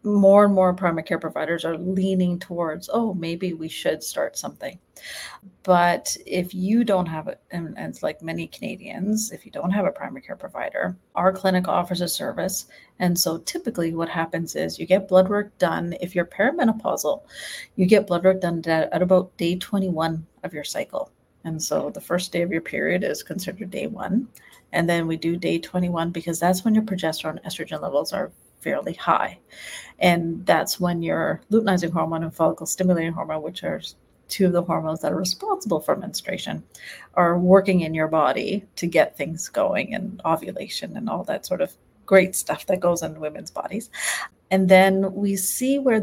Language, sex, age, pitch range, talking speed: English, female, 40-59, 170-195 Hz, 185 wpm